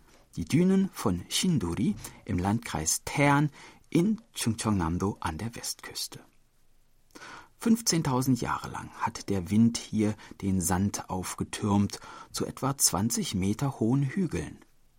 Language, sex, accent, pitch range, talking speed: German, male, German, 95-130 Hz, 110 wpm